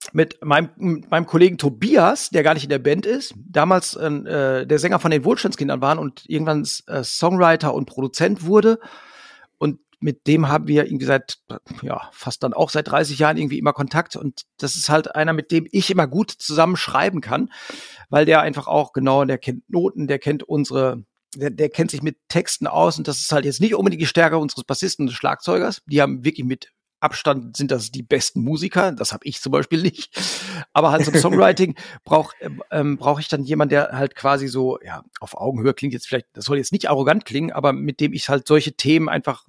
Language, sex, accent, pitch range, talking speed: German, male, German, 140-170 Hz, 210 wpm